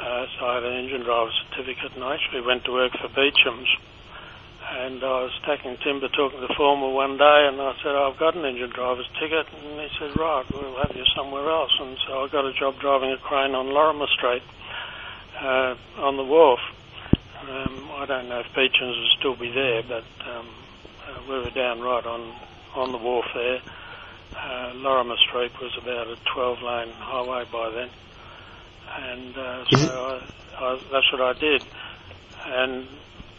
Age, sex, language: 60-79, male, English